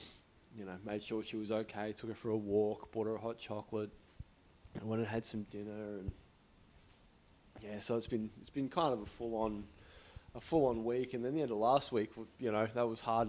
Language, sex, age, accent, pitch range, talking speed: English, male, 20-39, Australian, 110-145 Hz, 220 wpm